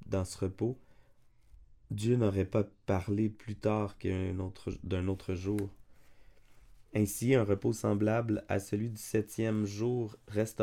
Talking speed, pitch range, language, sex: 135 wpm, 100-115 Hz, French, male